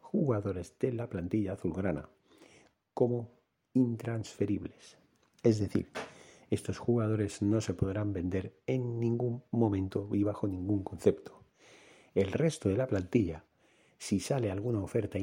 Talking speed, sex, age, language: 120 wpm, male, 40-59, Spanish